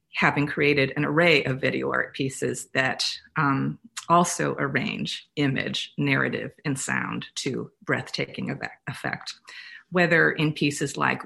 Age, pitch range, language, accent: 40-59, 135-160 Hz, English, American